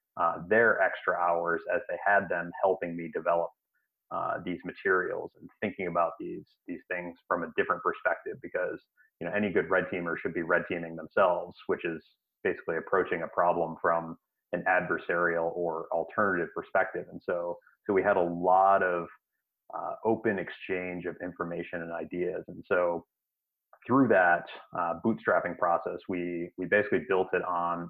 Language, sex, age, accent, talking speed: English, male, 30-49, American, 165 wpm